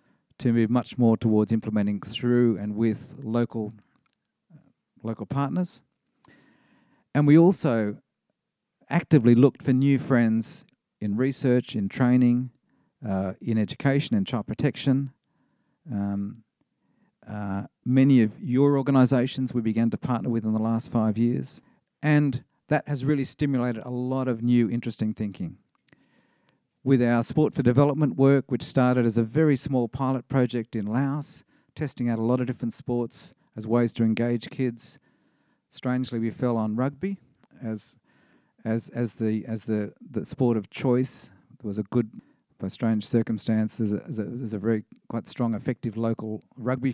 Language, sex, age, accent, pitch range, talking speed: English, male, 50-69, Australian, 110-135 Hz, 155 wpm